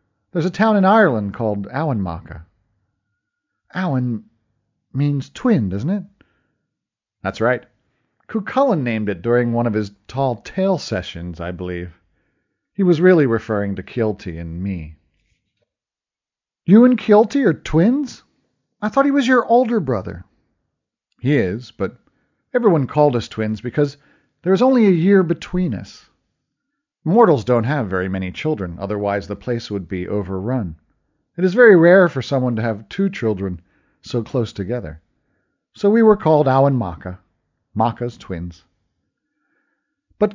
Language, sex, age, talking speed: English, male, 40-59, 145 wpm